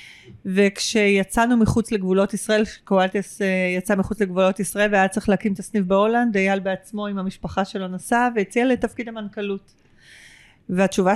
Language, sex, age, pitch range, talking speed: Hebrew, female, 40-59, 195-230 Hz, 135 wpm